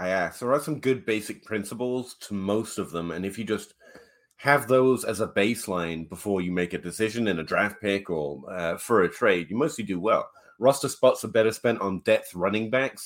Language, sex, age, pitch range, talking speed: English, male, 30-49, 95-115 Hz, 220 wpm